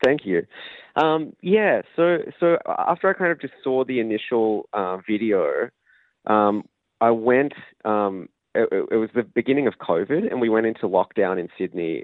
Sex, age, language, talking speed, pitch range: male, 20-39, English, 170 wpm, 95-115 Hz